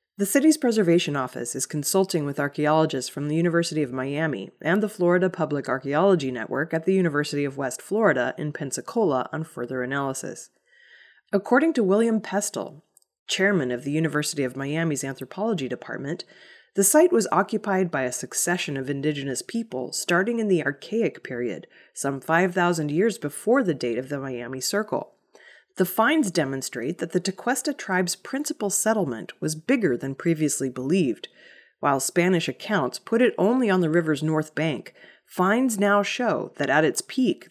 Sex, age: female, 30-49